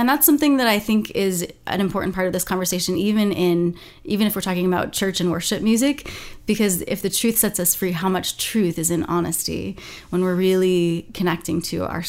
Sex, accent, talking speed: female, American, 215 wpm